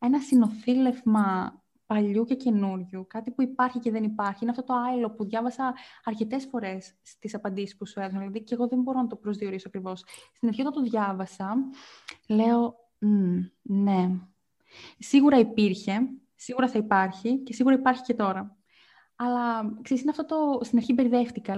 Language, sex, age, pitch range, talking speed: Greek, female, 20-39, 205-245 Hz, 165 wpm